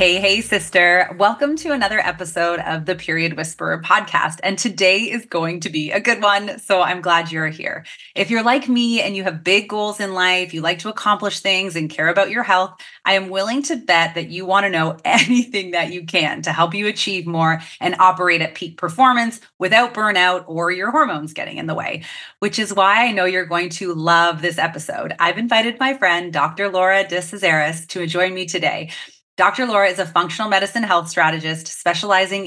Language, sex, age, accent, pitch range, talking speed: English, female, 30-49, American, 170-205 Hz, 205 wpm